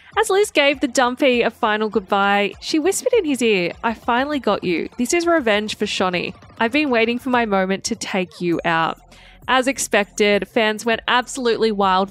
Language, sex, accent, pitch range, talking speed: English, female, Australian, 195-260 Hz, 190 wpm